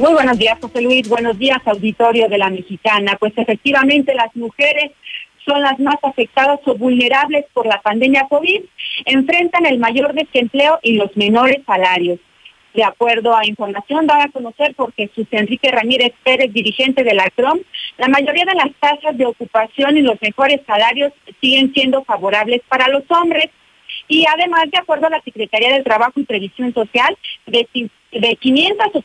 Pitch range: 225-285 Hz